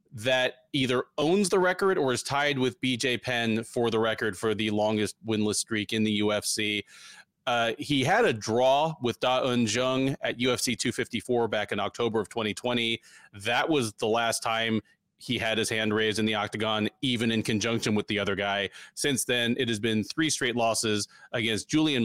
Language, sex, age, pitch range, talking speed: English, male, 30-49, 110-145 Hz, 190 wpm